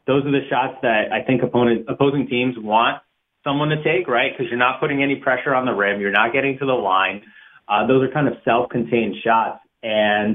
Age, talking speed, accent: 30-49, 215 wpm, American